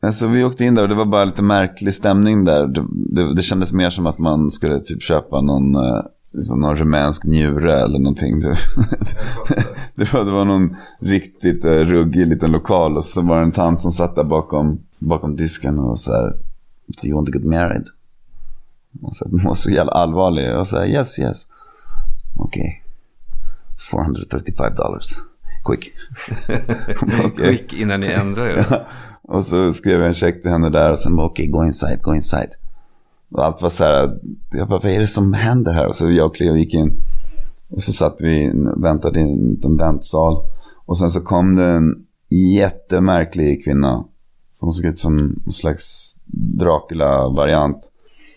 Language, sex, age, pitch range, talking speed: Swedish, male, 30-49, 80-95 Hz, 180 wpm